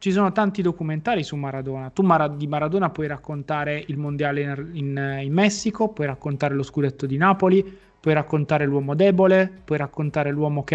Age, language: 20-39, Italian